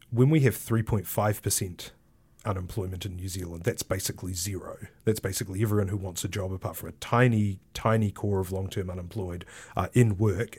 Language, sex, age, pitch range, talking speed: English, male, 30-49, 100-120 Hz, 170 wpm